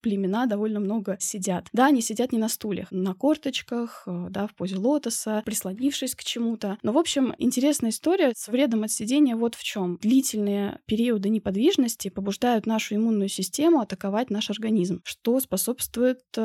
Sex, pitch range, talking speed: female, 205-255 Hz, 155 wpm